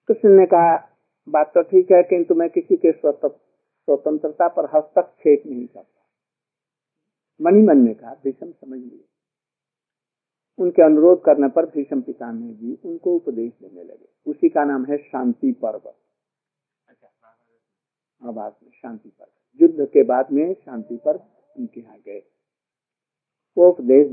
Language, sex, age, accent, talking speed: Hindi, male, 50-69, native, 125 wpm